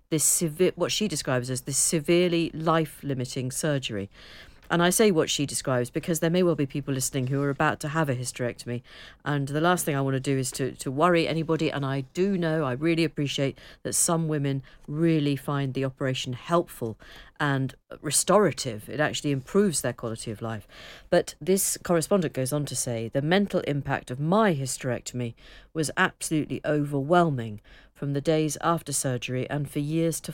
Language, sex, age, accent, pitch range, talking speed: English, female, 50-69, British, 130-165 Hz, 180 wpm